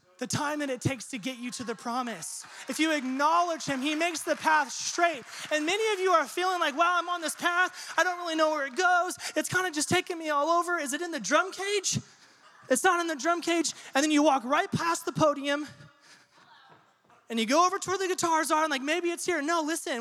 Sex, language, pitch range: male, English, 225-315 Hz